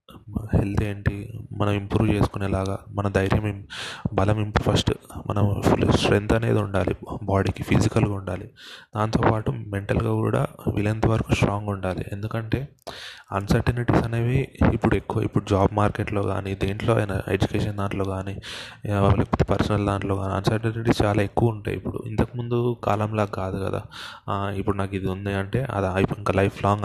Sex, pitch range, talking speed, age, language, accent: male, 100-115 Hz, 135 wpm, 20-39, Telugu, native